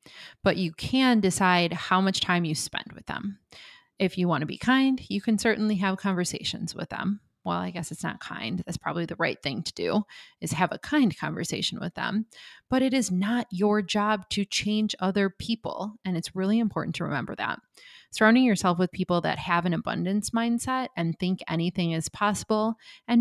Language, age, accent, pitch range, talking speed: English, 20-39, American, 175-220 Hz, 195 wpm